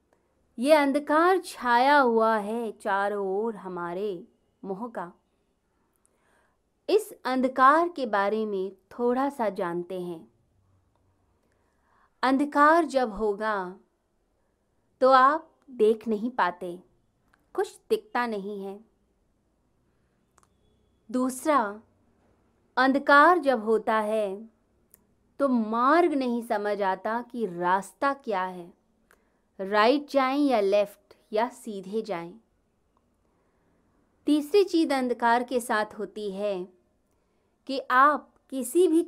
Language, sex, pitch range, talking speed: Hindi, female, 195-275 Hz, 95 wpm